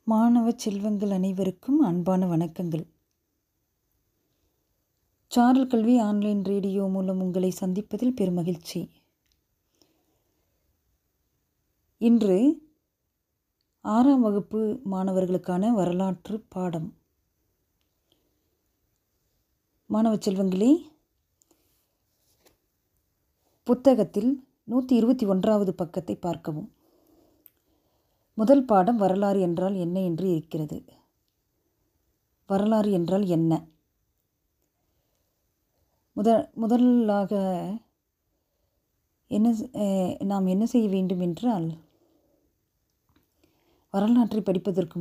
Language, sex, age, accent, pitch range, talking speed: Tamil, female, 30-49, native, 180-230 Hz, 65 wpm